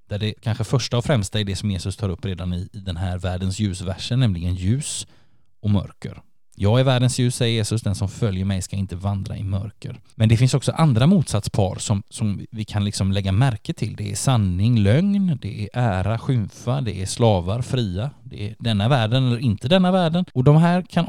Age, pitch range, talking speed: 20-39, 100-130 Hz, 215 wpm